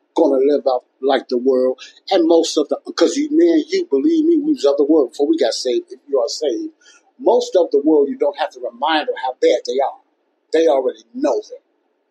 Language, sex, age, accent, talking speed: English, male, 30-49, American, 235 wpm